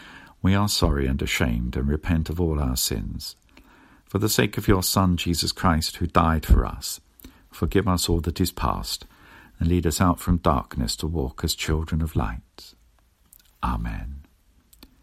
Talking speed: 170 wpm